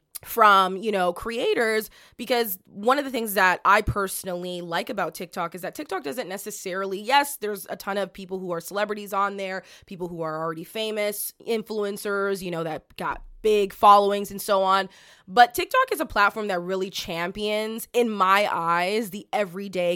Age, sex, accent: 20-39, female, American